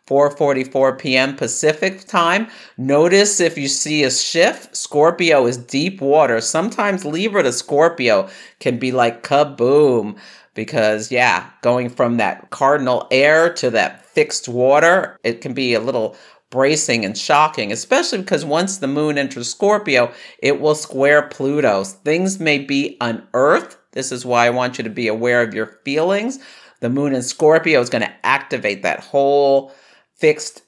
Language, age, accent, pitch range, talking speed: English, 50-69, American, 120-165 Hz, 155 wpm